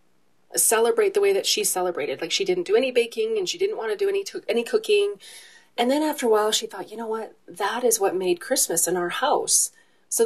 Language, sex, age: English, female, 30-49